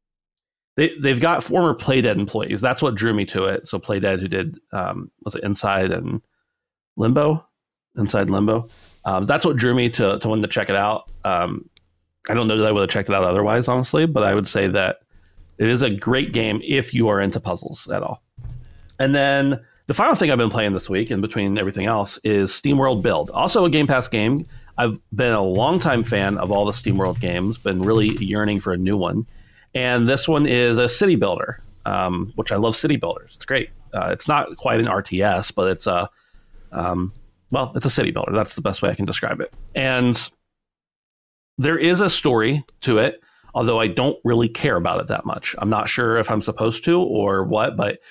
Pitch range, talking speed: 100-125 Hz, 210 wpm